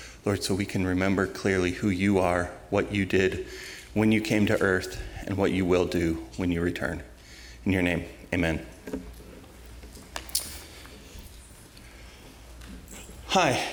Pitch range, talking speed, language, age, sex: 90-125 Hz, 130 wpm, English, 30-49, male